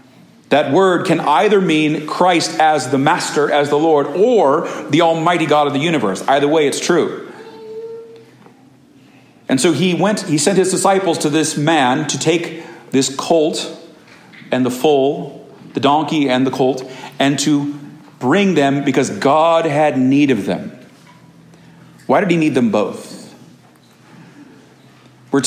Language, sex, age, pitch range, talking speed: English, male, 40-59, 130-165 Hz, 150 wpm